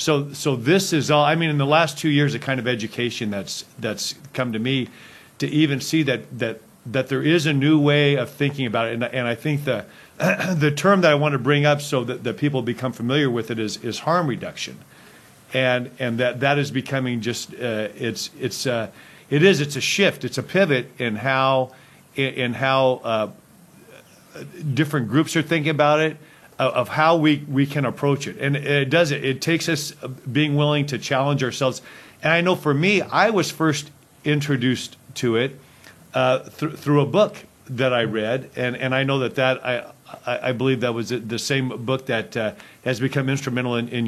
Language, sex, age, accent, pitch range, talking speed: English, male, 50-69, American, 125-150 Hz, 205 wpm